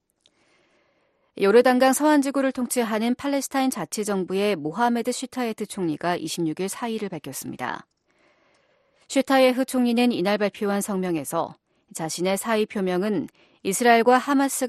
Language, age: Korean, 40-59